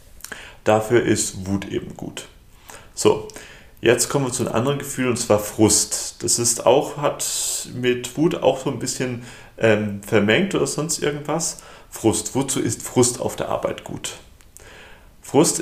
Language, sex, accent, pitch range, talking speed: German, male, German, 110-140 Hz, 155 wpm